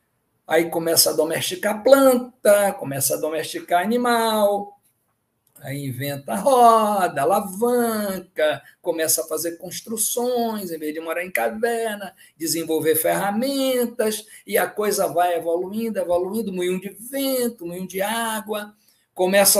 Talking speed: 115 wpm